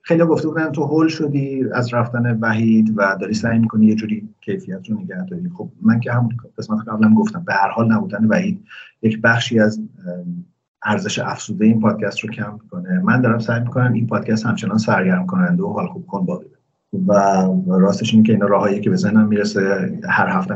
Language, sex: Persian, male